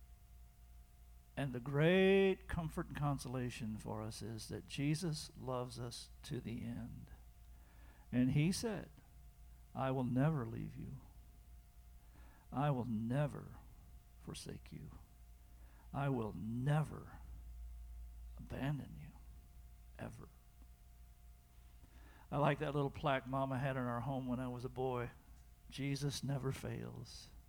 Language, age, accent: English, 50-69, American